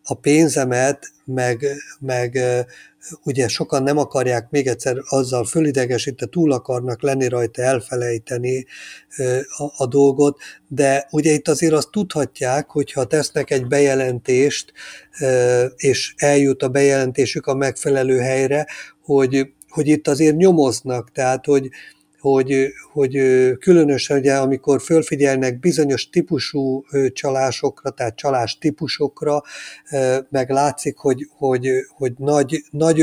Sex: male